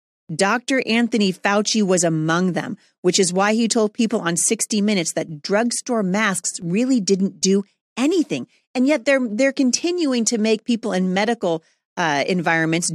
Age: 40-59